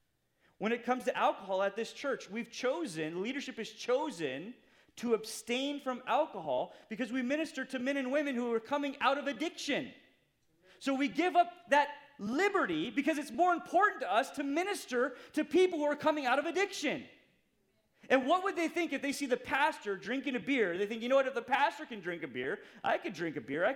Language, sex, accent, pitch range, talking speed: English, male, American, 195-285 Hz, 210 wpm